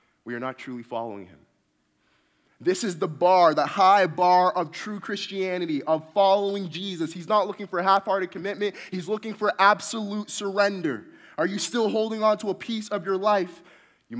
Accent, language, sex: American, English, male